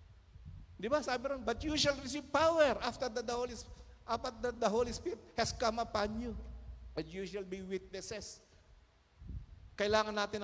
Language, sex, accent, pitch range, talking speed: Filipino, male, native, 145-215 Hz, 150 wpm